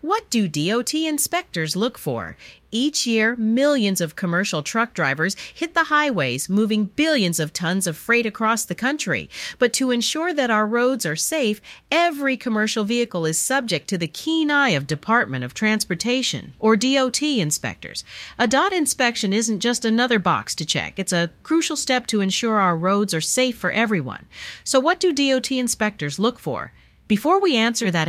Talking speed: 175 wpm